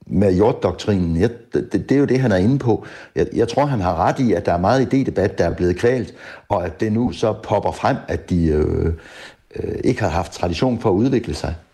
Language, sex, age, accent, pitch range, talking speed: Danish, male, 60-79, native, 85-120 Hz, 245 wpm